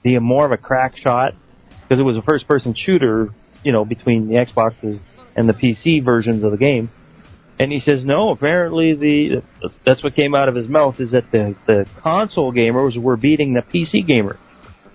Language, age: English, 40-59